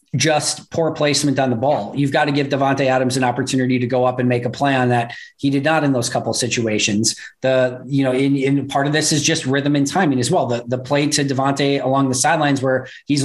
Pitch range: 130-145 Hz